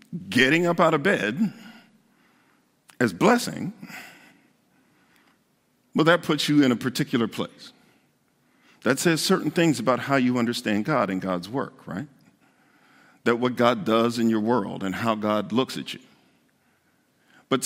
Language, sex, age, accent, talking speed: English, male, 50-69, American, 145 wpm